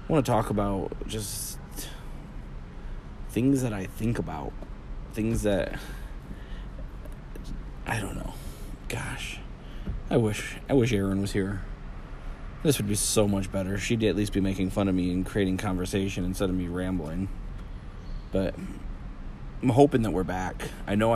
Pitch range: 95-110 Hz